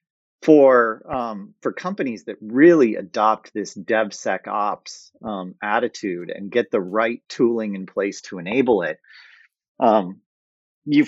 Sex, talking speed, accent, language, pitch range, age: male, 125 wpm, American, English, 100-130 Hz, 40-59